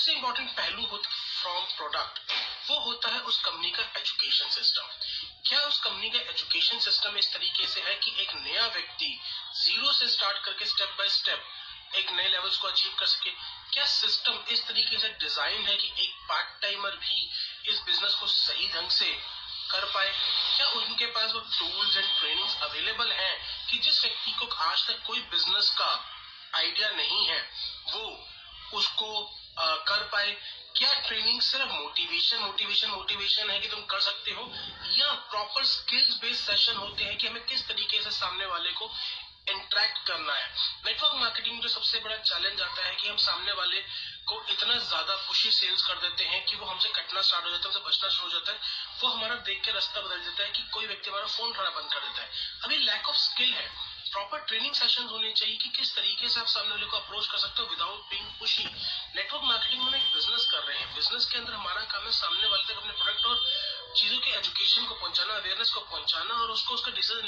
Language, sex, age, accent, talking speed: Hindi, male, 30-49, native, 205 wpm